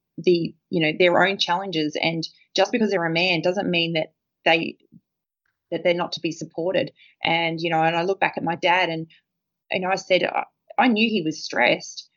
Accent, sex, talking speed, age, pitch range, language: Australian, female, 205 wpm, 20-39, 165-195 Hz, English